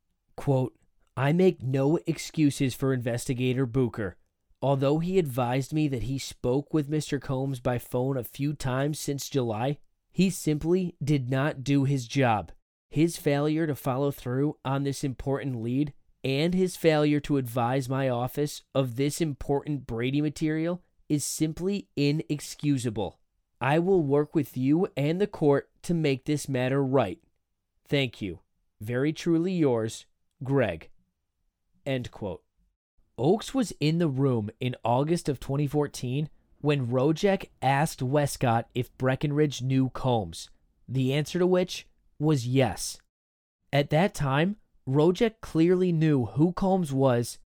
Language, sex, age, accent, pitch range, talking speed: English, male, 20-39, American, 125-155 Hz, 135 wpm